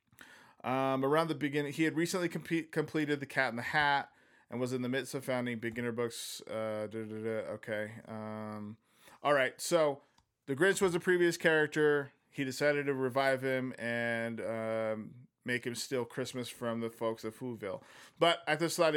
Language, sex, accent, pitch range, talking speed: English, male, American, 115-150 Hz, 185 wpm